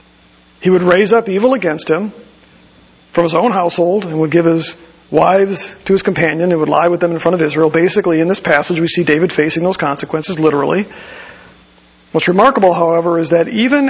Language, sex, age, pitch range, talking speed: English, male, 40-59, 155-205 Hz, 195 wpm